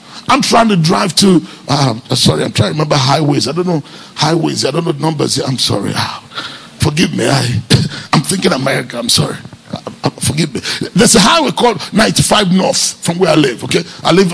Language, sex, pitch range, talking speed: English, male, 175-230 Hz, 205 wpm